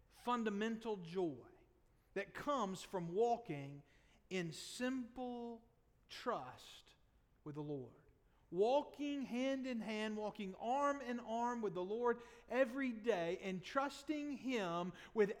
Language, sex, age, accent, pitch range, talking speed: English, male, 40-59, American, 185-265 Hz, 115 wpm